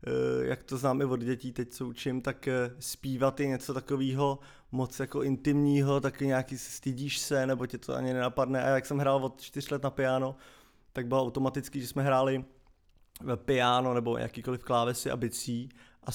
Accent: native